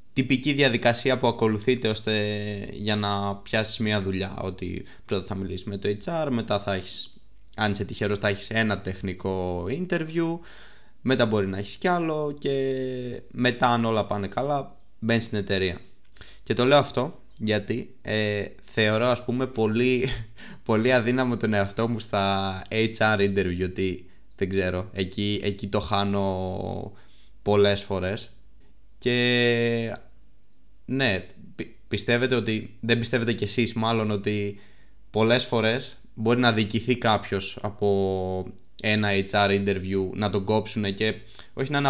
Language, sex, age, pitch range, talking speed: Greek, male, 20-39, 100-120 Hz, 140 wpm